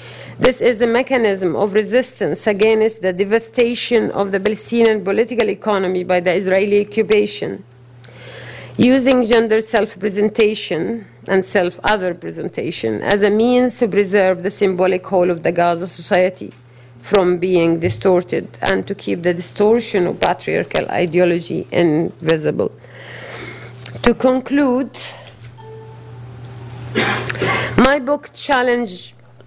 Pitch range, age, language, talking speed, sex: 175-220 Hz, 40-59, English, 110 wpm, female